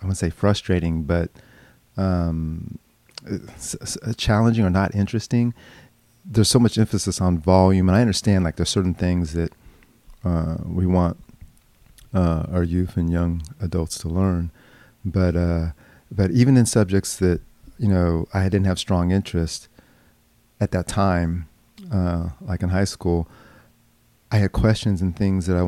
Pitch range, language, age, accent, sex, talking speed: 85-105 Hz, English, 40-59, American, male, 150 wpm